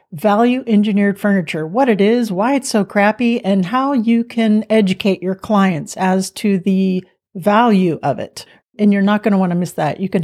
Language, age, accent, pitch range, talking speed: English, 40-59, American, 180-220 Hz, 200 wpm